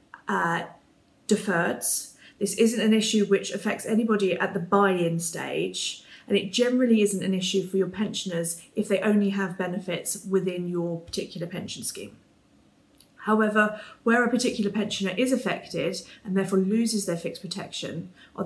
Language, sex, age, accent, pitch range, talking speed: English, female, 30-49, British, 180-215 Hz, 150 wpm